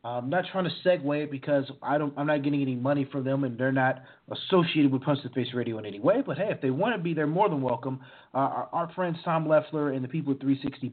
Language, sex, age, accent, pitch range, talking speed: English, male, 30-49, American, 125-150 Hz, 280 wpm